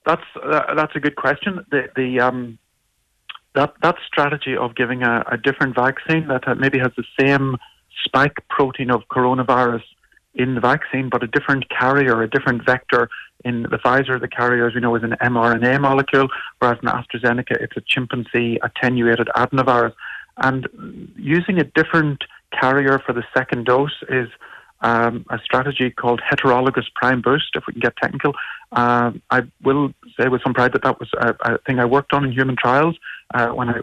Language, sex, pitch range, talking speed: English, male, 120-135 Hz, 180 wpm